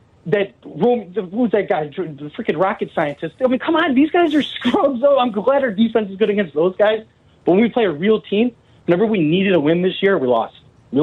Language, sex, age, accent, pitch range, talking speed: English, male, 30-49, American, 180-245 Hz, 235 wpm